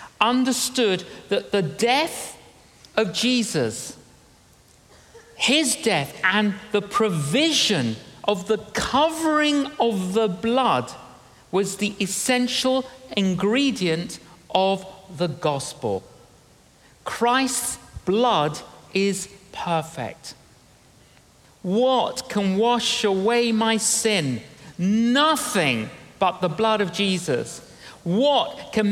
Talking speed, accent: 85 wpm, British